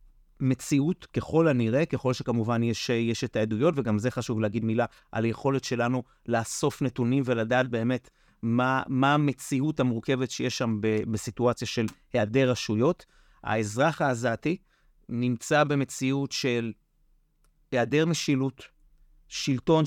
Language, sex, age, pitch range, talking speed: English, male, 30-49, 120-150 Hz, 115 wpm